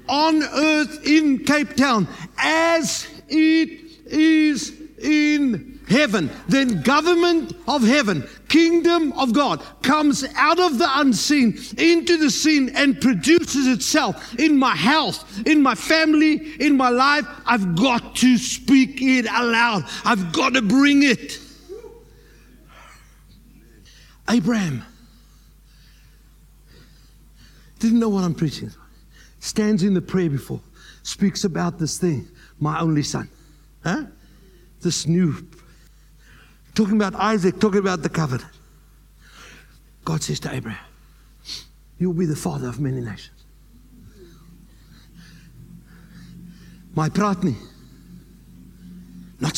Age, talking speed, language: 60-79, 110 wpm, English